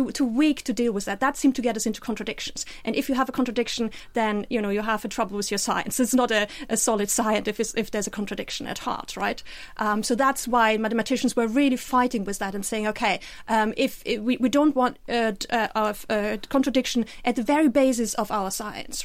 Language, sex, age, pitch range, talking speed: English, female, 30-49, 215-255 Hz, 235 wpm